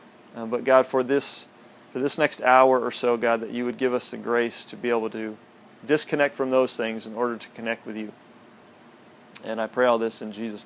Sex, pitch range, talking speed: male, 125-150 Hz, 225 wpm